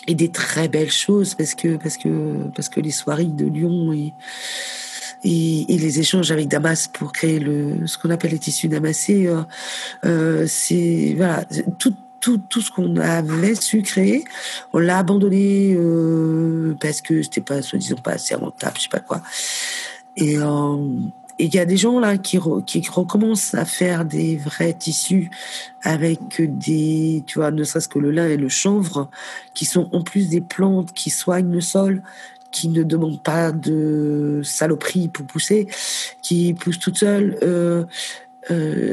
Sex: female